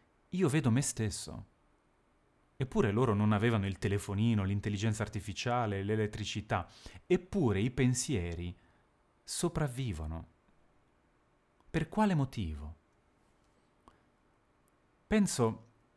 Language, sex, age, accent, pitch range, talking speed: Italian, male, 30-49, native, 95-135 Hz, 80 wpm